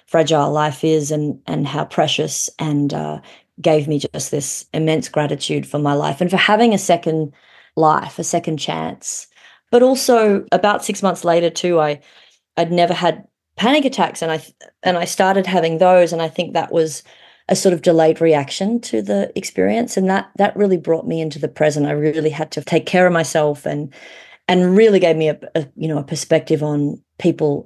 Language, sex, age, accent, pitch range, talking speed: English, female, 30-49, Australian, 150-180 Hz, 195 wpm